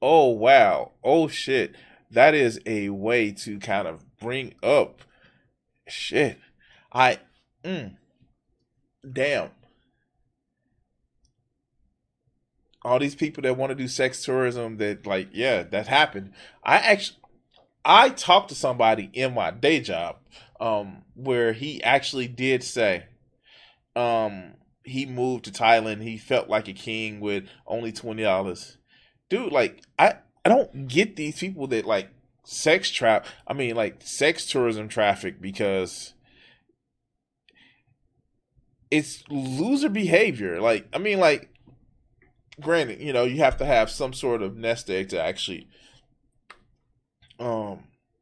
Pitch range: 110-135 Hz